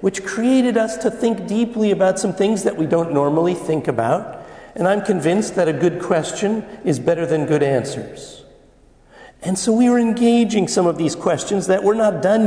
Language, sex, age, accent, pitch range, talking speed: English, male, 50-69, American, 140-190 Hz, 190 wpm